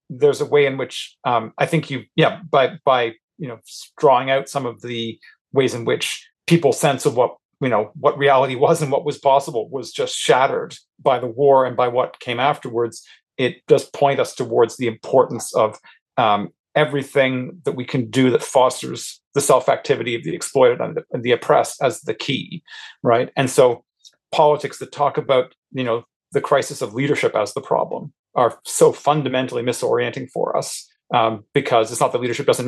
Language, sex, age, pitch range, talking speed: English, male, 40-59, 125-170 Hz, 190 wpm